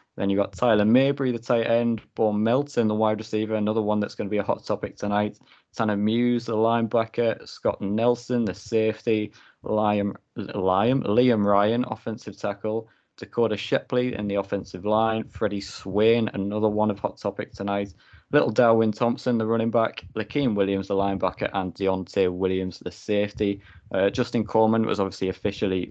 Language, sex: English, male